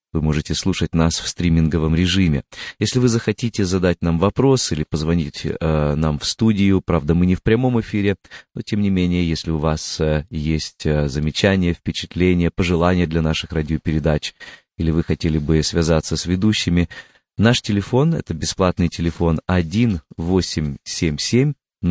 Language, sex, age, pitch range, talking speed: Russian, male, 30-49, 80-95 Hz, 150 wpm